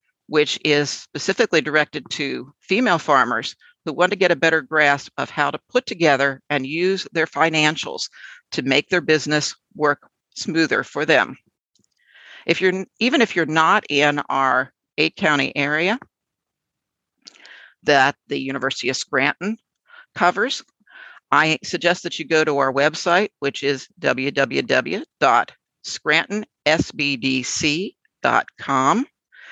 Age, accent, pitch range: 50-69, American, 145-185 Hz